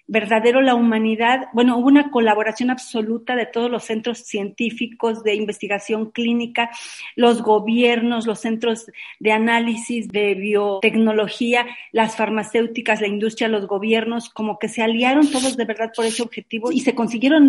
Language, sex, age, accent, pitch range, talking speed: Spanish, female, 40-59, Mexican, 215-255 Hz, 150 wpm